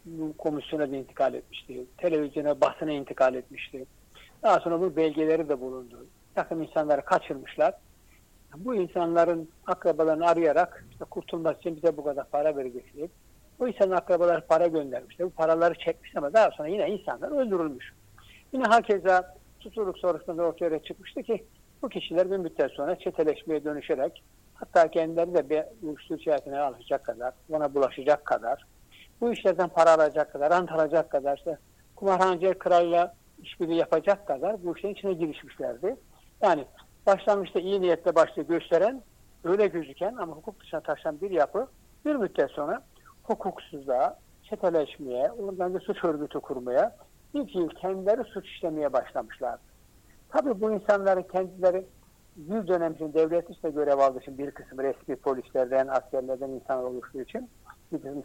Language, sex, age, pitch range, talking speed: Turkish, male, 60-79, 145-185 Hz, 145 wpm